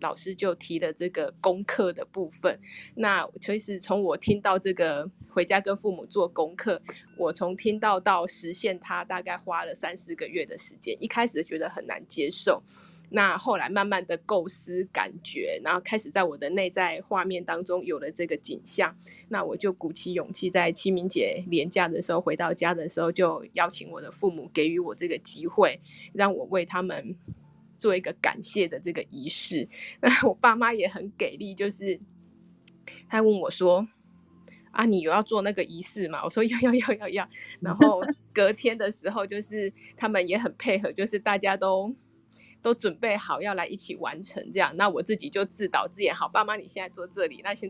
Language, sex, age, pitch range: Chinese, female, 20-39, 180-215 Hz